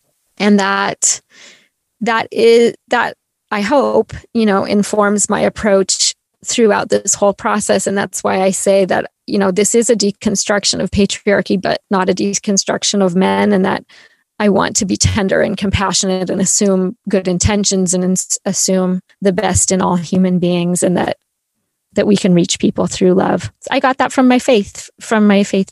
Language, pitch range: English, 190-215 Hz